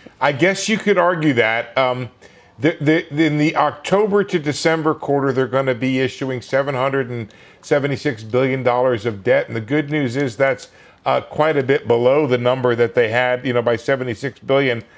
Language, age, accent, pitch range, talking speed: English, 50-69, American, 125-150 Hz, 180 wpm